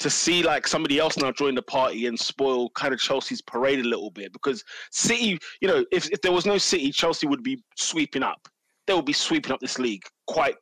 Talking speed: 230 wpm